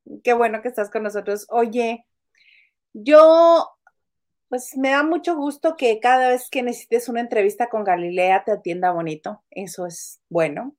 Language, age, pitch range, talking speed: Spanish, 40-59, 200-255 Hz, 155 wpm